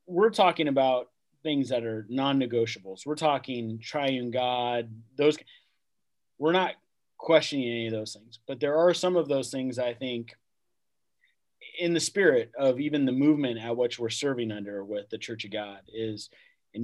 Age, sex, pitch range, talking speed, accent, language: 30-49, male, 115-140 Hz, 170 wpm, American, English